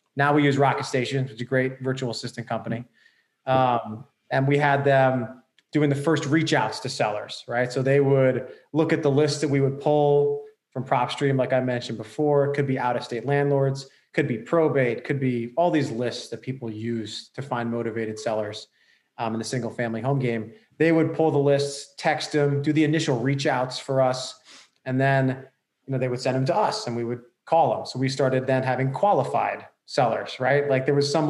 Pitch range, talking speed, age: 125-145 Hz, 210 wpm, 20-39